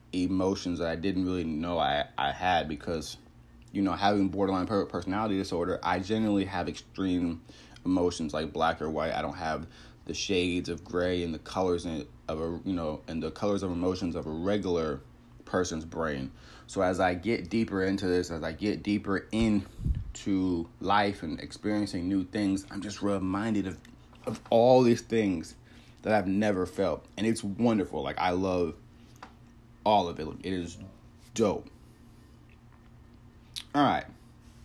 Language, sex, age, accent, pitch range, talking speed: English, male, 30-49, American, 90-115 Hz, 160 wpm